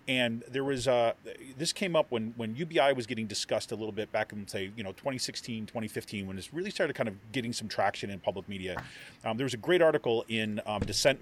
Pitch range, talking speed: 105-130 Hz, 235 wpm